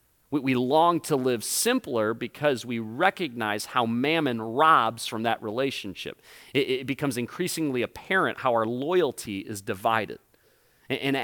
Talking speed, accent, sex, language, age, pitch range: 130 wpm, American, male, English, 40-59, 135-195 Hz